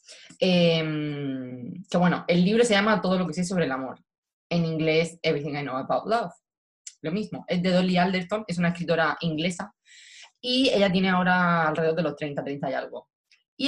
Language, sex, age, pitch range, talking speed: English, female, 20-39, 155-185 Hz, 190 wpm